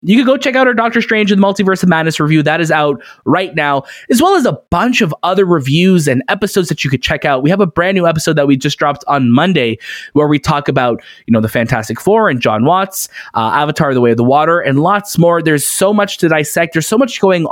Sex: male